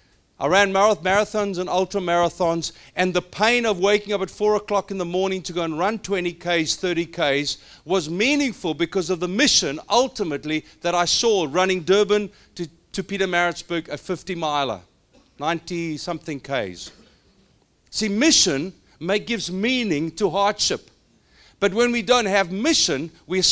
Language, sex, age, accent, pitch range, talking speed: English, male, 50-69, South African, 175-215 Hz, 155 wpm